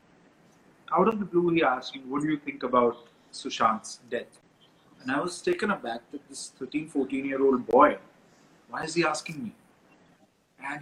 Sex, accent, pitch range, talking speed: male, native, 150-225 Hz, 175 wpm